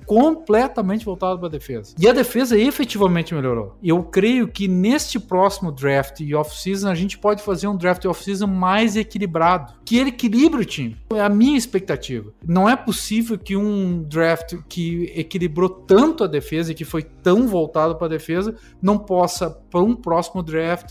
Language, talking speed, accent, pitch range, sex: Portuguese, 175 wpm, Brazilian, 145-205 Hz, male